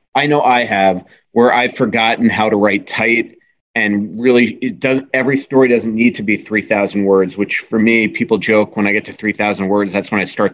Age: 30-49